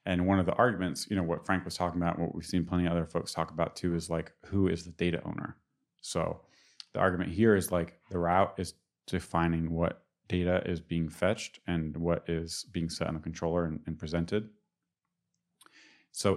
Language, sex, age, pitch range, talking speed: English, male, 30-49, 85-100 Hz, 205 wpm